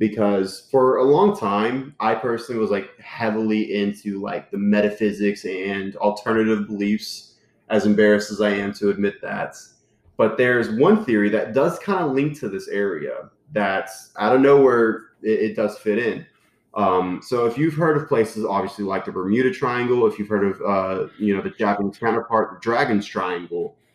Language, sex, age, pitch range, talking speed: English, male, 20-39, 100-115 Hz, 180 wpm